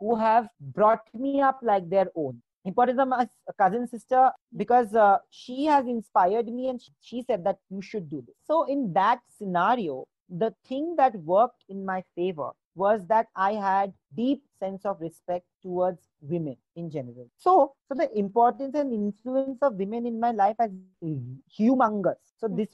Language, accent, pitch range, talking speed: English, Indian, 175-235 Hz, 170 wpm